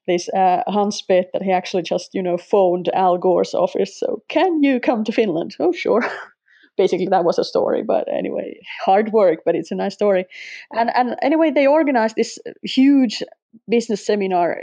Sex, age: female, 30-49